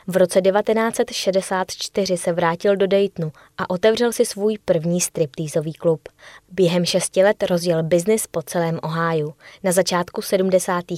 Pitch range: 170-195 Hz